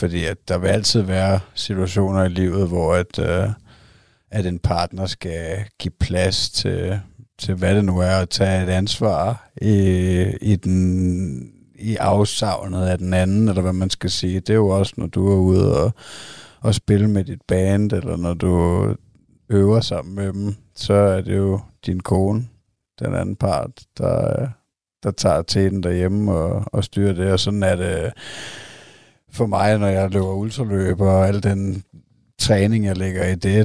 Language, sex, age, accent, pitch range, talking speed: Danish, male, 60-79, native, 95-105 Hz, 175 wpm